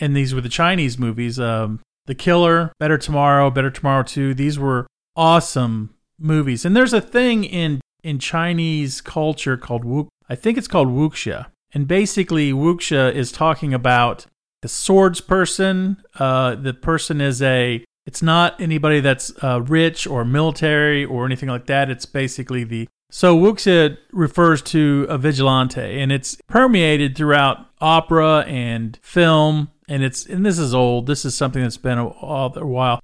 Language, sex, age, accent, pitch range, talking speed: English, male, 40-59, American, 130-165 Hz, 160 wpm